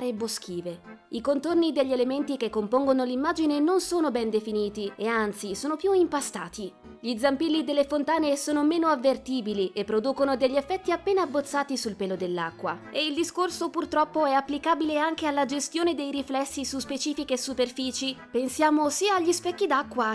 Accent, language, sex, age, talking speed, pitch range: native, Italian, female, 20-39, 160 wpm, 225-305 Hz